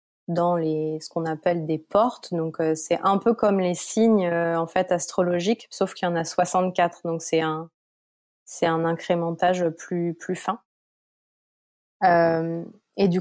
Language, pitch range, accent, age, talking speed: French, 170-195 Hz, French, 20-39, 170 wpm